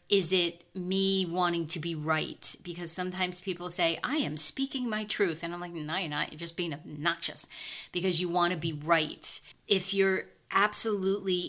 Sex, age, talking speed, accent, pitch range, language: female, 30-49, 185 wpm, American, 165-185 Hz, English